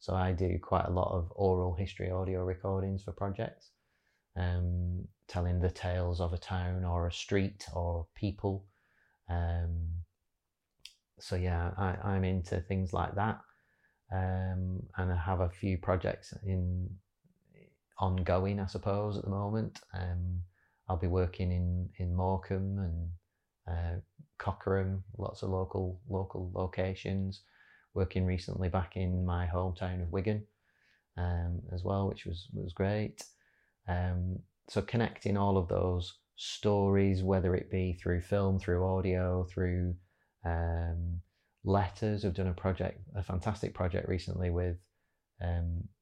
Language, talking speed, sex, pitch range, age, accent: English, 135 wpm, male, 90-95 Hz, 30-49, British